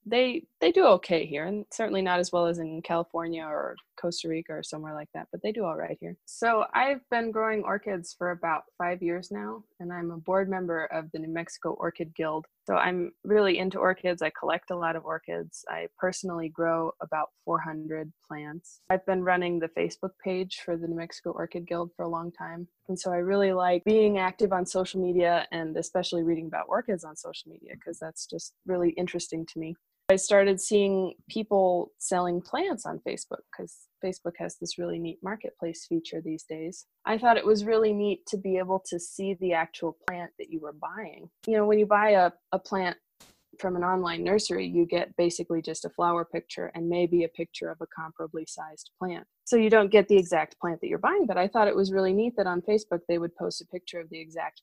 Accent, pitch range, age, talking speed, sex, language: American, 170-195 Hz, 20-39, 215 wpm, female, English